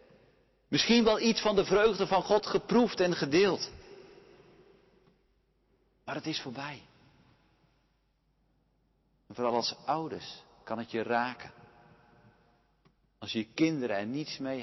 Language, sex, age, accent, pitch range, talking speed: Dutch, male, 50-69, Dutch, 125-185 Hz, 115 wpm